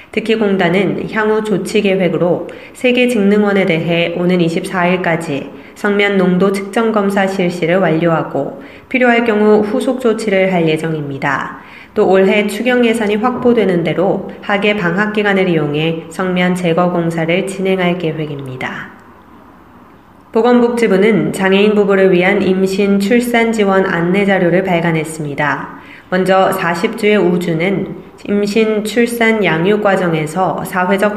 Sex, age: female, 20-39